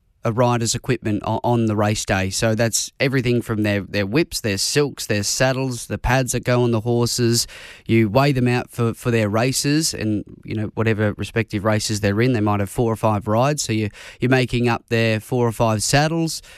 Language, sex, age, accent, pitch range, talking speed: English, male, 20-39, Australian, 110-130 Hz, 210 wpm